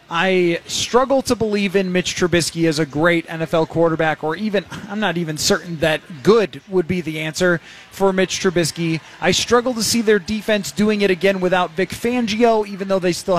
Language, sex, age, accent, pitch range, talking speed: English, male, 20-39, American, 175-235 Hz, 195 wpm